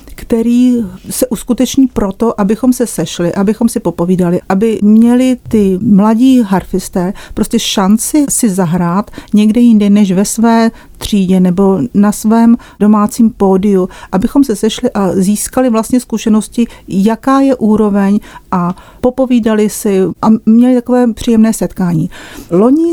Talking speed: 125 wpm